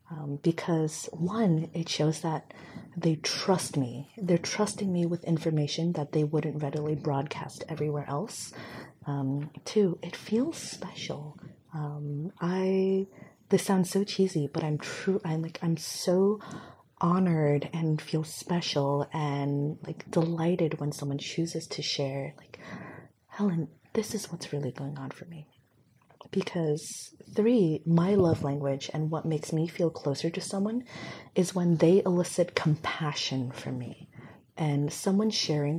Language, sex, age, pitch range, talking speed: English, female, 30-49, 145-180 Hz, 140 wpm